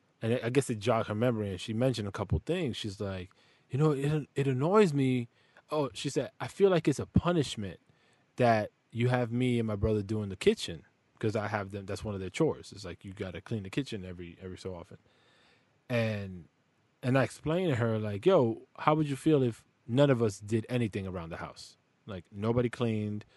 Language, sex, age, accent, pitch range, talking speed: English, male, 20-39, American, 100-125 Hz, 220 wpm